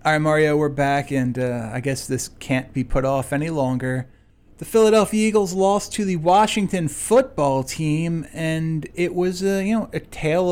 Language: English